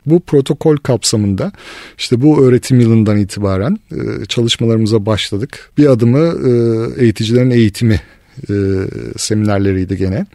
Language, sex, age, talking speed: Turkish, male, 50-69, 95 wpm